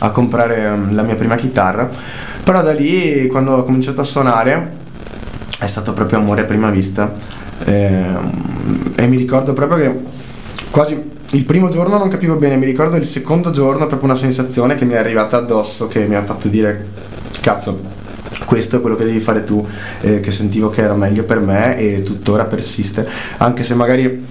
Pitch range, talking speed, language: 105-125 Hz, 180 wpm, Italian